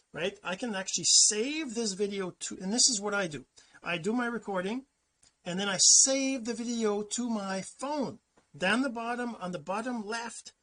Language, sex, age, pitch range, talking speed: English, male, 40-59, 170-230 Hz, 190 wpm